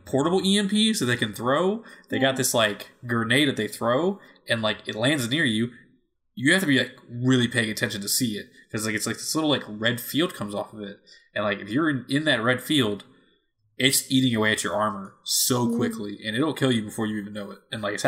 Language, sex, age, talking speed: English, male, 20-39, 240 wpm